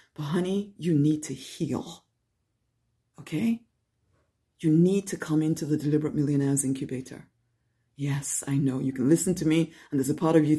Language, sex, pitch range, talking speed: English, female, 130-160 Hz, 170 wpm